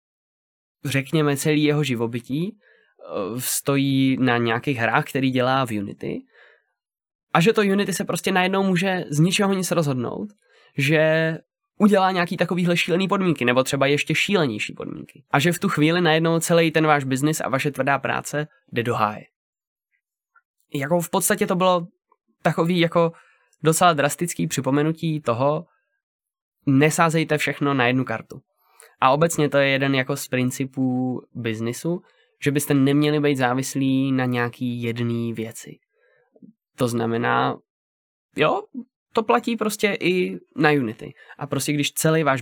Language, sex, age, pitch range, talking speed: Czech, male, 20-39, 125-175 Hz, 140 wpm